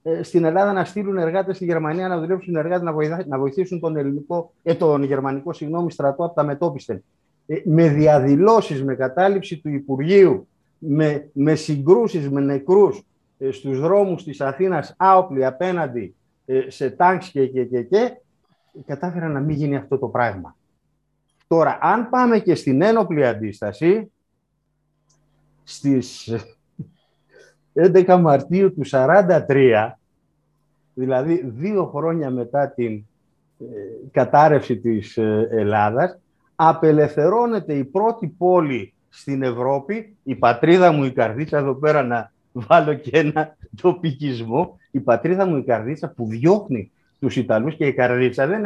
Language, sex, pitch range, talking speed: Greek, male, 130-175 Hz, 125 wpm